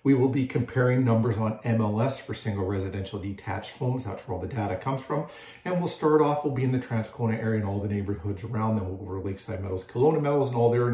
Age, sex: 40-59, male